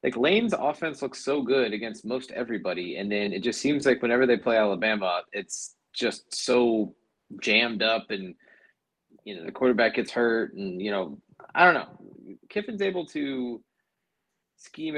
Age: 20-39